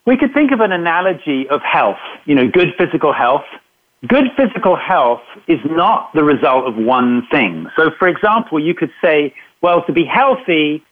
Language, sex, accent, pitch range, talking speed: English, male, British, 150-225 Hz, 180 wpm